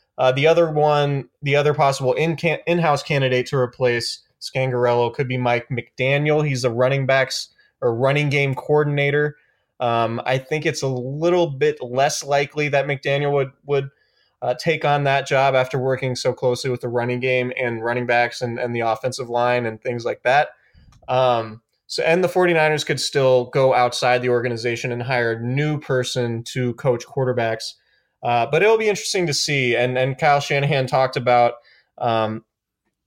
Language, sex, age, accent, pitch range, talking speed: English, male, 20-39, American, 120-145 Hz, 175 wpm